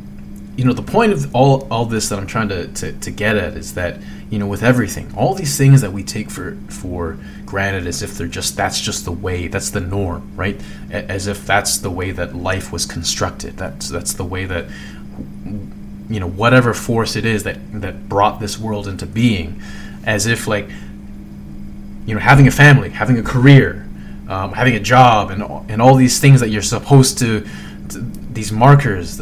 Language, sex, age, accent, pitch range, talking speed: English, male, 20-39, American, 95-125 Hz, 200 wpm